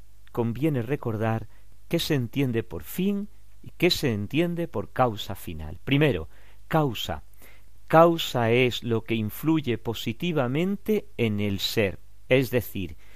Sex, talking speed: male, 125 wpm